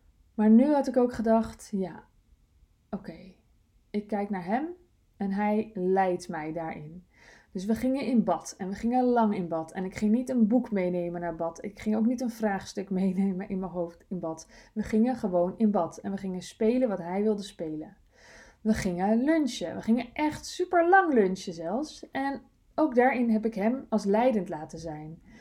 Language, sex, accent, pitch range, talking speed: Dutch, female, Dutch, 190-250 Hz, 195 wpm